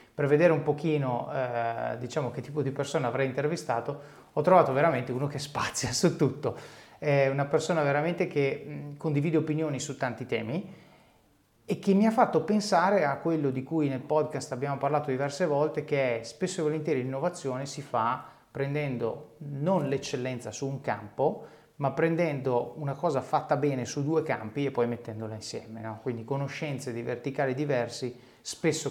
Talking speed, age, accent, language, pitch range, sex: 165 wpm, 30-49, native, Italian, 125-150 Hz, male